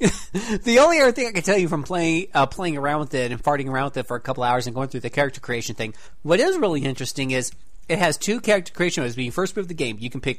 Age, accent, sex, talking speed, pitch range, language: 40-59, American, male, 295 wpm, 125-195 Hz, English